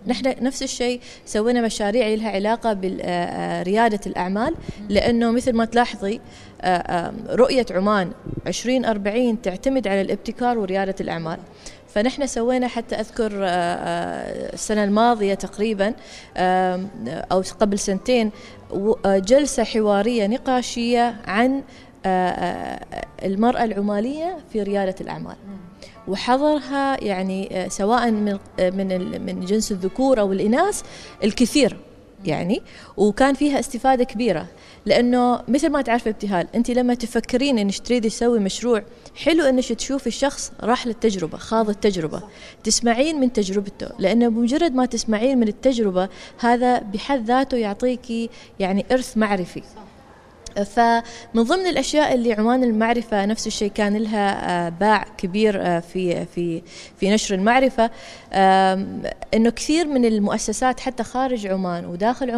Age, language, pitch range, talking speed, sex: 20-39, Arabic, 195-250 Hz, 115 wpm, female